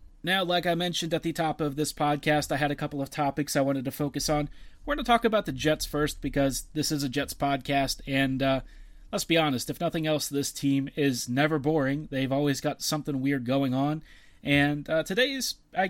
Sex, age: male, 30-49